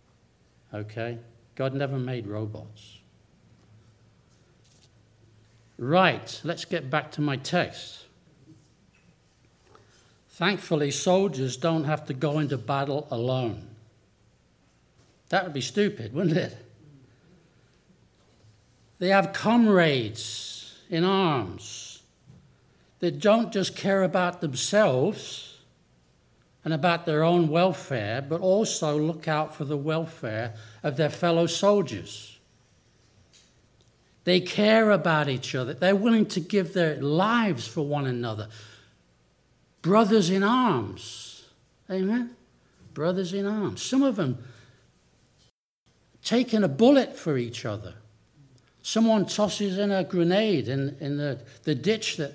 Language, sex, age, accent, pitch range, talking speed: English, male, 60-79, British, 120-185 Hz, 110 wpm